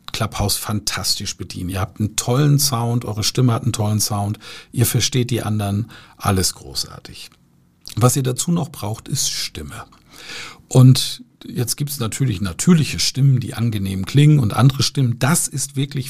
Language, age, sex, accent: German, 50-69, male, German